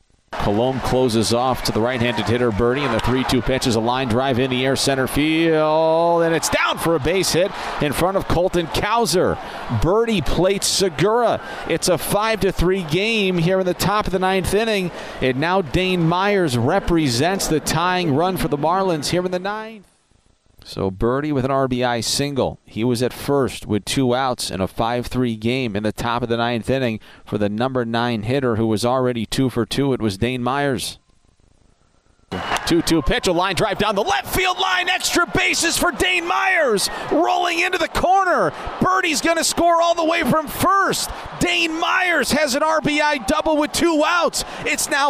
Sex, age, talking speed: male, 40-59, 185 wpm